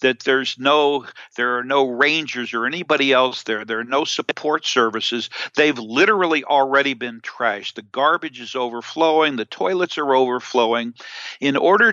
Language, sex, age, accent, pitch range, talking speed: English, male, 60-79, American, 125-170 Hz, 155 wpm